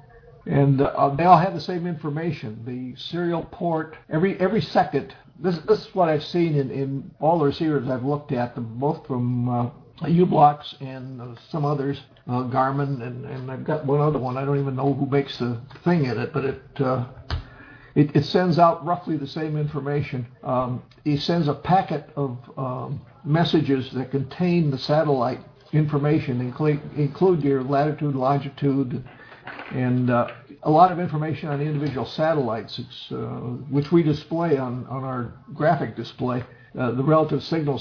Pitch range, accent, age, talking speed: 130-150 Hz, American, 60-79, 170 wpm